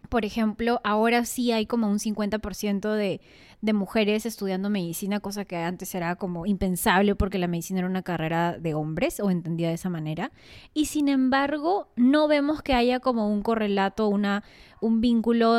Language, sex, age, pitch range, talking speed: Spanish, female, 20-39, 195-240 Hz, 170 wpm